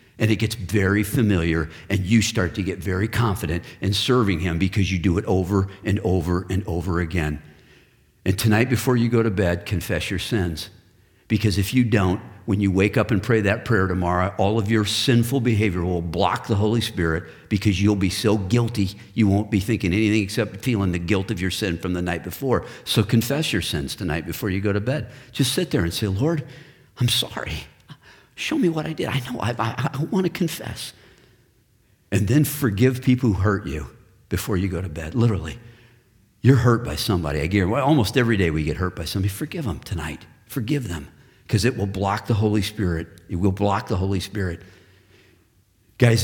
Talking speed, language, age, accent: 200 wpm, English, 50-69, American